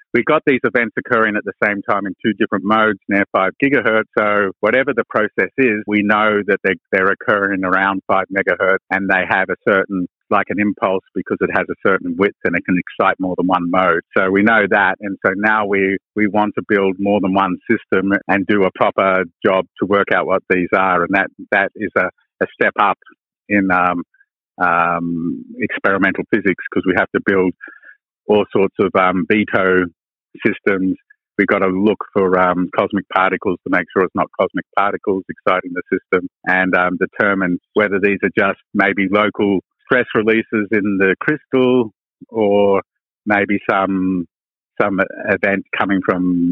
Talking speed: 180 wpm